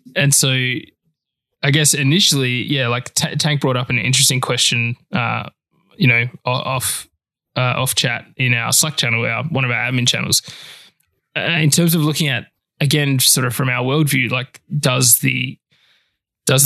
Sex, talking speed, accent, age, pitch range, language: male, 170 wpm, Australian, 20-39, 120-145 Hz, English